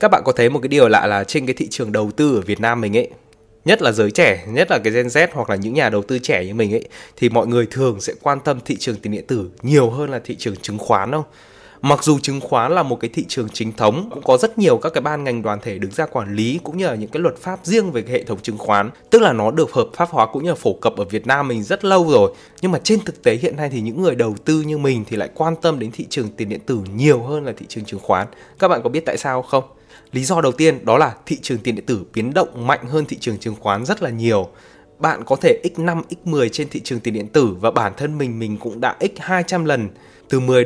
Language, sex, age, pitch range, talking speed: Vietnamese, male, 20-39, 115-155 Hz, 295 wpm